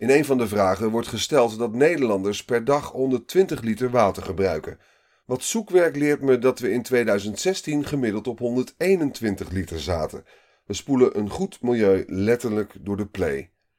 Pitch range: 100-130 Hz